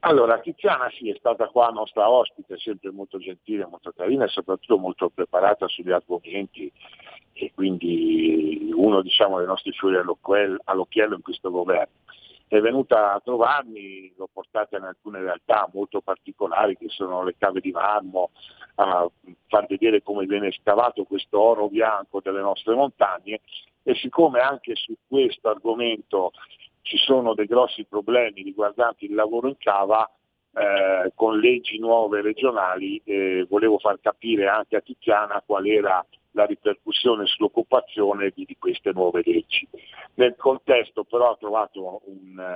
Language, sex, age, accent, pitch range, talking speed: Italian, male, 50-69, native, 100-145 Hz, 145 wpm